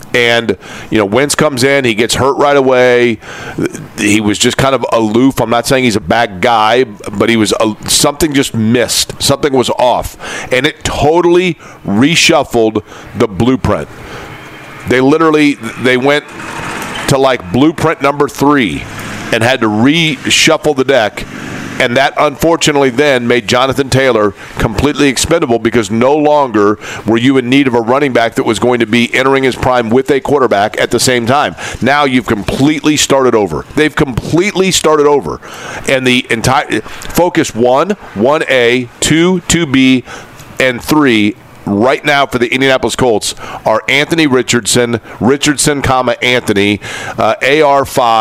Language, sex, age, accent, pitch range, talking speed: English, male, 40-59, American, 115-145 Hz, 150 wpm